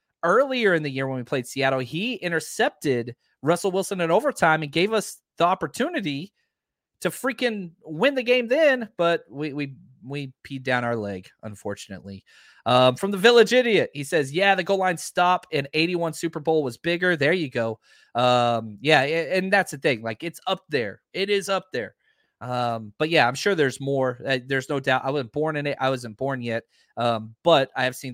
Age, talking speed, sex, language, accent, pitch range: 30-49, 200 wpm, male, English, American, 125-180 Hz